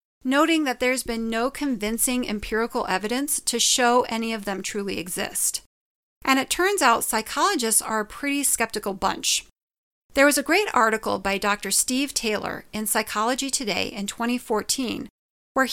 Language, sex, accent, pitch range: English, female, American, 210-265 Hz